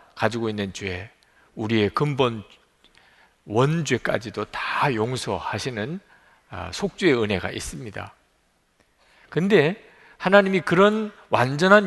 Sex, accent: male, native